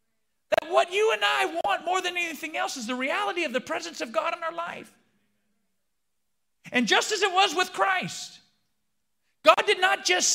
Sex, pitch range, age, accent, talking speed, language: male, 190-320 Hz, 40-59, American, 185 wpm, Italian